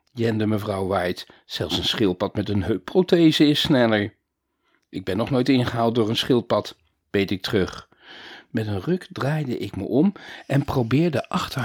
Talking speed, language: 165 wpm, Dutch